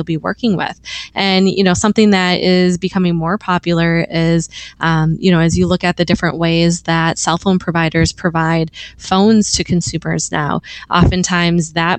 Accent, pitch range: American, 170-195 Hz